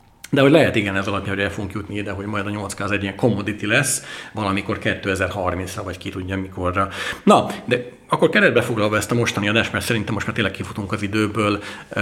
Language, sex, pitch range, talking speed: Hungarian, male, 100-115 Hz, 210 wpm